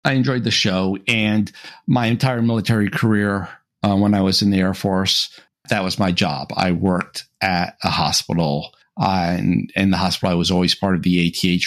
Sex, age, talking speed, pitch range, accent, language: male, 50-69, 195 wpm, 90-125 Hz, American, English